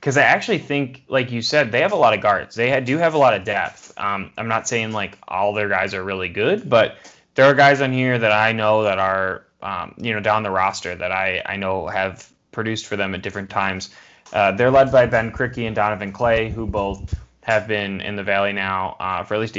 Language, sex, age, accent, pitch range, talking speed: English, male, 10-29, American, 100-125 Hz, 245 wpm